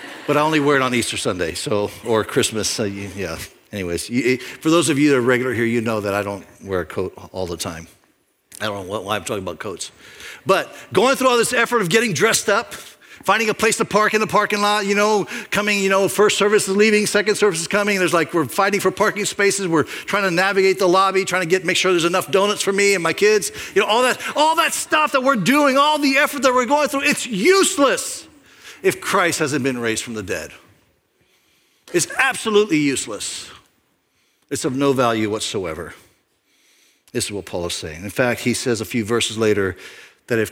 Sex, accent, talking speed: male, American, 225 wpm